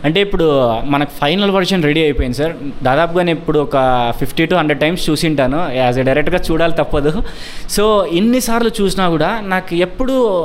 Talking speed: 160 wpm